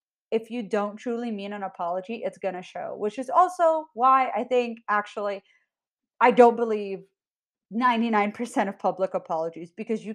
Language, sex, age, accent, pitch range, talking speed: English, female, 30-49, American, 190-255 Hz, 160 wpm